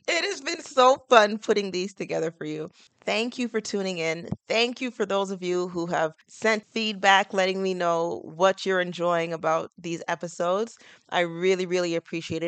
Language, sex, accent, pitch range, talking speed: English, female, American, 160-200 Hz, 185 wpm